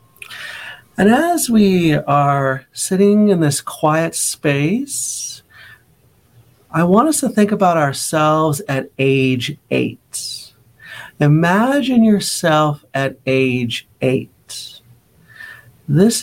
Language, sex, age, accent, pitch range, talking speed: English, male, 40-59, American, 125-175 Hz, 90 wpm